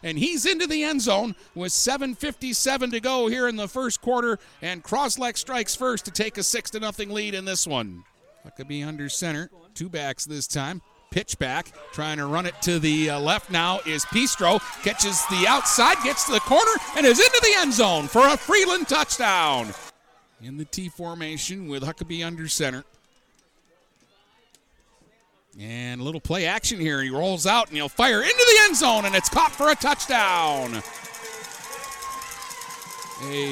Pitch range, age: 165-270 Hz, 50-69